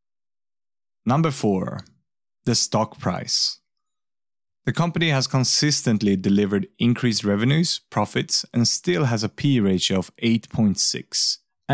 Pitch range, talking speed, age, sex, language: 100-130 Hz, 105 wpm, 30-49, male, English